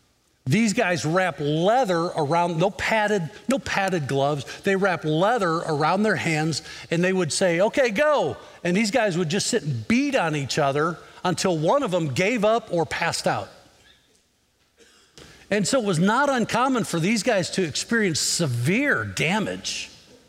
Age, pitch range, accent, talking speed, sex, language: 50-69, 155-220 Hz, American, 165 wpm, male, English